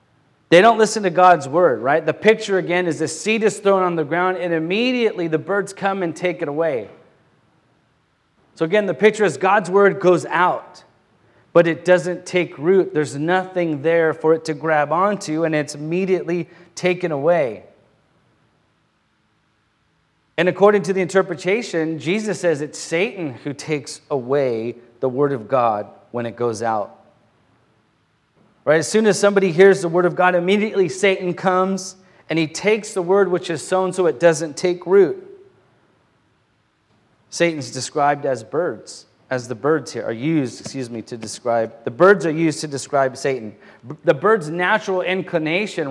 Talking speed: 165 wpm